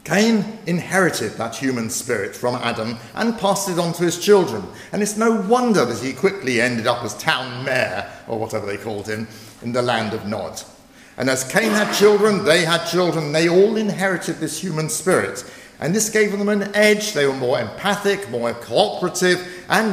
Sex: male